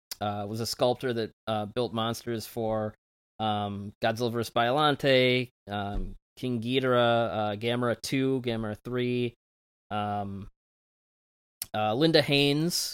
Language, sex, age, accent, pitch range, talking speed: English, male, 20-39, American, 105-125 Hz, 115 wpm